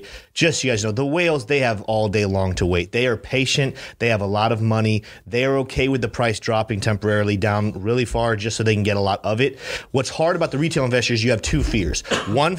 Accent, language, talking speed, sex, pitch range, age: American, English, 255 wpm, male, 115-155 Hz, 30-49